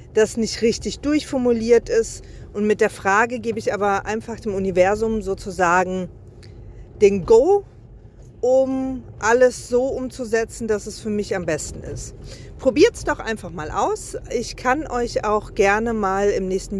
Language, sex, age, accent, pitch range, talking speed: German, female, 40-59, German, 205-265 Hz, 155 wpm